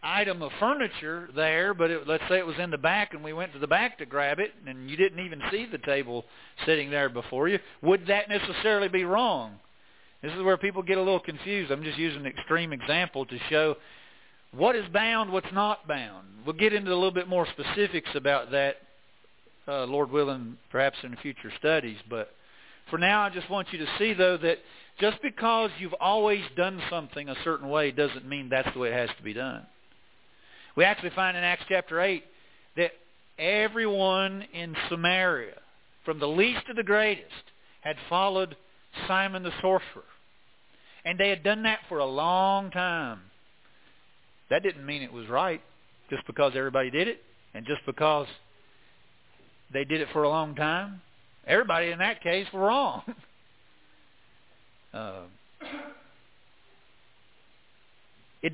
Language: English